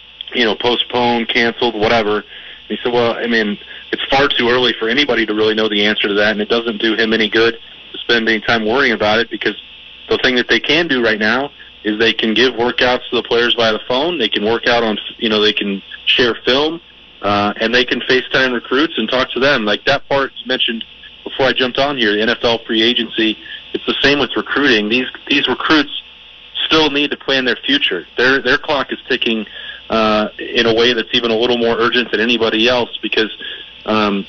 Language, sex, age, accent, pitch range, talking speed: English, male, 30-49, American, 110-120 Hz, 220 wpm